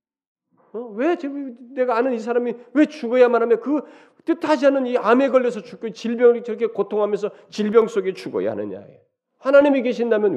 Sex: male